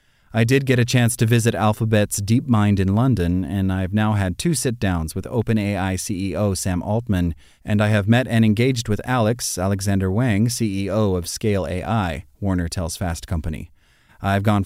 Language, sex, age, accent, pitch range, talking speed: English, male, 30-49, American, 100-125 Hz, 170 wpm